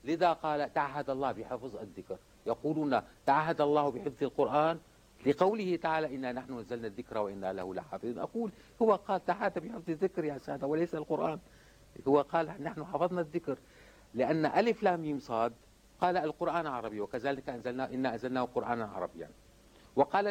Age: 60-79